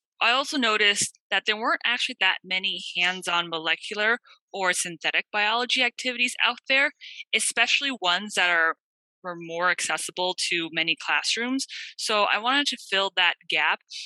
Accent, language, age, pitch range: American, English, 20-39, 170-230 Hz